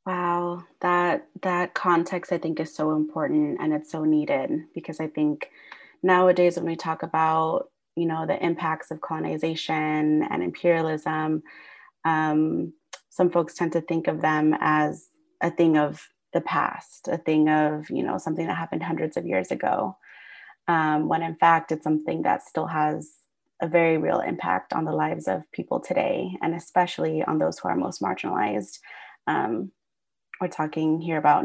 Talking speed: 165 wpm